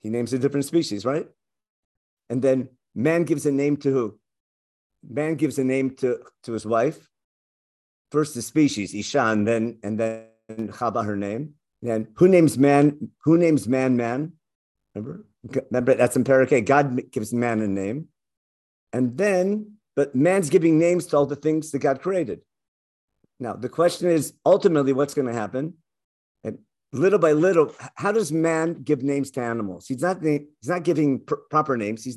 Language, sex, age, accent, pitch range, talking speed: English, male, 50-69, American, 120-165 Hz, 170 wpm